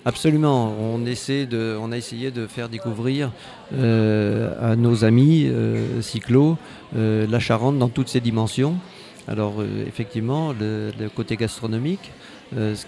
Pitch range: 110-130 Hz